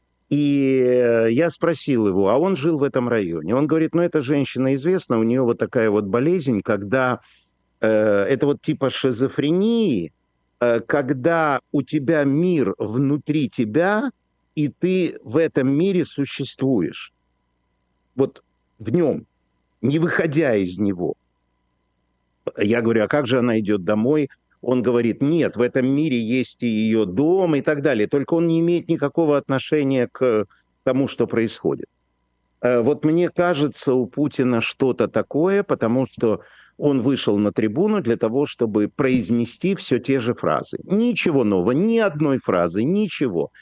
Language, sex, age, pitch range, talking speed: Russian, male, 50-69, 110-160 Hz, 145 wpm